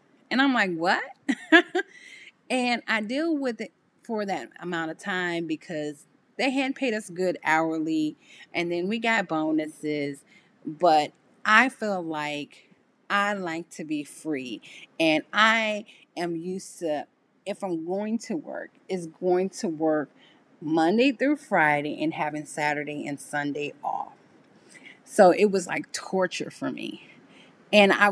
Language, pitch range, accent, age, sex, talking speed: English, 160-220 Hz, American, 30-49, female, 145 wpm